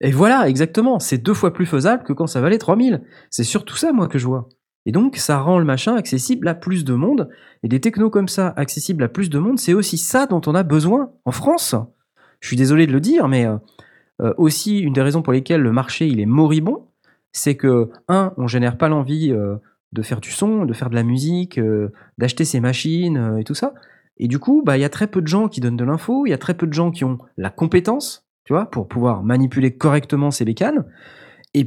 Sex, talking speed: male, 240 wpm